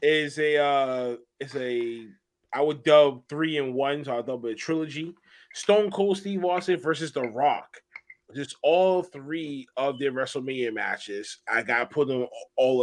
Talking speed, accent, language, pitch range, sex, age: 175 wpm, American, English, 135-180 Hz, male, 30-49